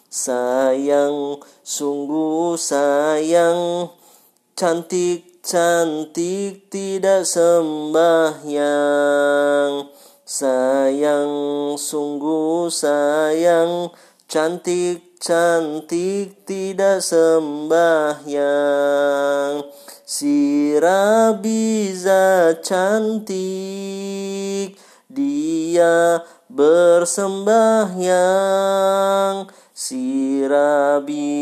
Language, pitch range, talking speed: Indonesian, 145-175 Hz, 35 wpm